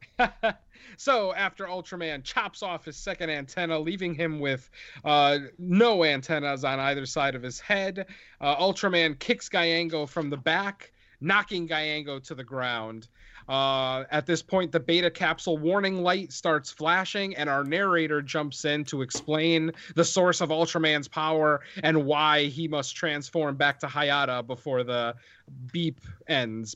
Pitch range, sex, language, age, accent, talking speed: 140-180 Hz, male, English, 30-49, American, 150 wpm